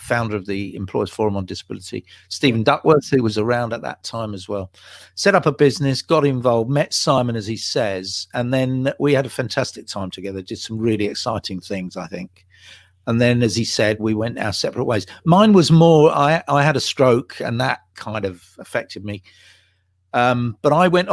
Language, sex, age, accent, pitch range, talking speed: English, male, 50-69, British, 95-135 Hz, 200 wpm